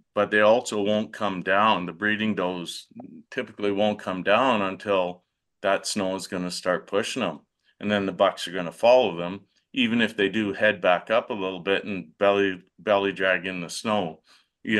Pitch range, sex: 95-110 Hz, male